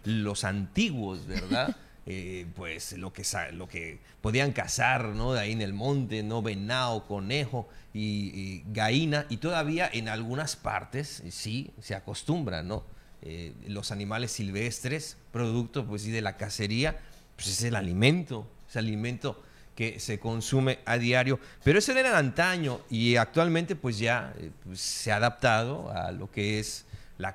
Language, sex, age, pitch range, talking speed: Spanish, male, 40-59, 105-150 Hz, 160 wpm